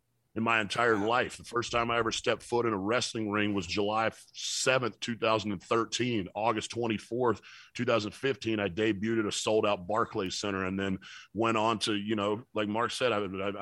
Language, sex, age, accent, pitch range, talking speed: English, male, 30-49, American, 105-115 Hz, 180 wpm